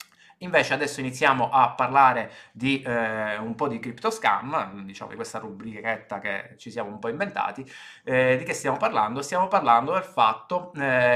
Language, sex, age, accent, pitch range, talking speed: Italian, male, 20-39, native, 115-140 Hz, 170 wpm